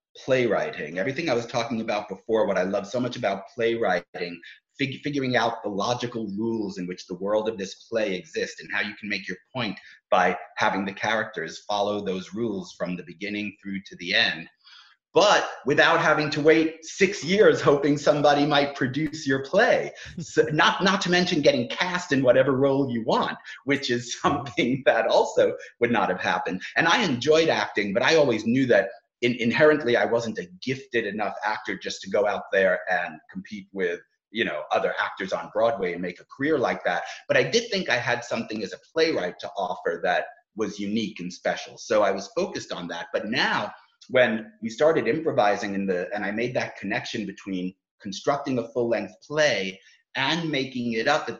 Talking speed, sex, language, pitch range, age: 190 wpm, male, English, 105-155 Hz, 30-49